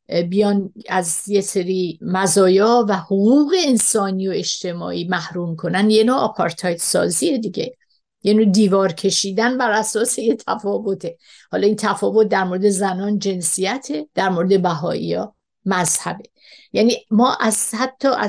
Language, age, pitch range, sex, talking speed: Persian, 60-79, 185-225 Hz, female, 135 wpm